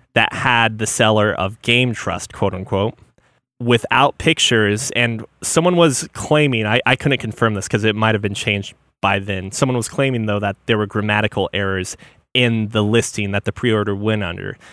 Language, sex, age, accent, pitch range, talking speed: English, male, 20-39, American, 105-130 Hz, 185 wpm